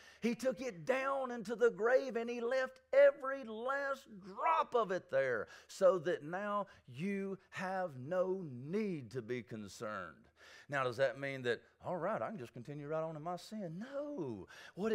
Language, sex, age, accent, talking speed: English, male, 40-59, American, 175 wpm